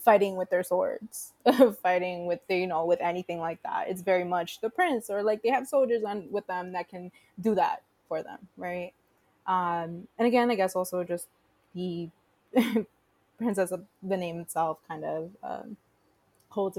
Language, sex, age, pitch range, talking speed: English, female, 20-39, 170-200 Hz, 180 wpm